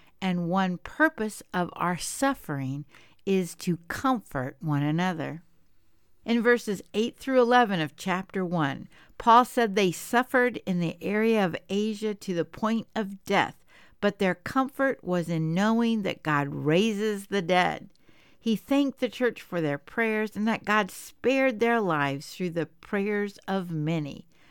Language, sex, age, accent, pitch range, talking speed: English, female, 60-79, American, 170-230 Hz, 150 wpm